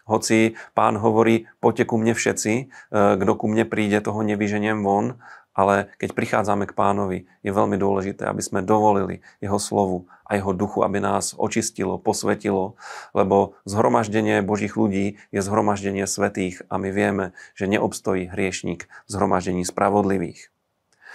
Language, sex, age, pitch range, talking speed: Slovak, male, 40-59, 95-105 Hz, 140 wpm